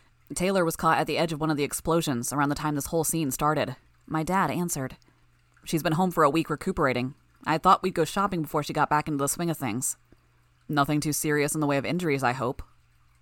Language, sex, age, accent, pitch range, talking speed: English, female, 20-39, American, 130-175 Hz, 235 wpm